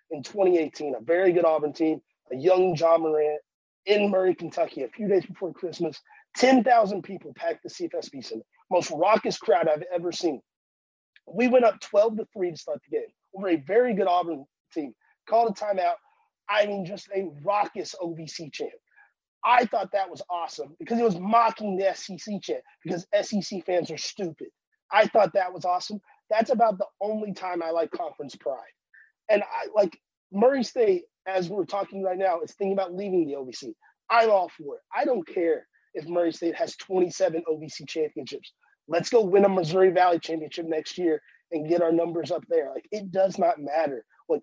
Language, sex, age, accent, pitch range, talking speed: English, male, 30-49, American, 170-230 Hz, 190 wpm